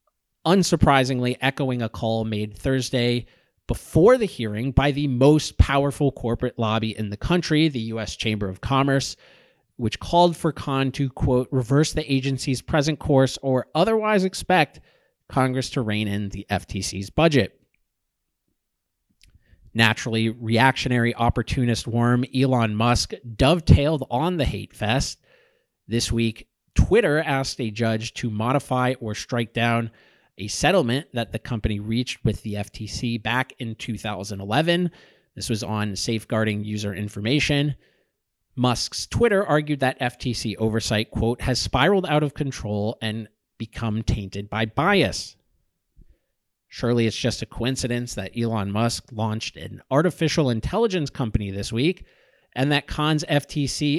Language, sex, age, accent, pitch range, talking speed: English, male, 30-49, American, 110-140 Hz, 135 wpm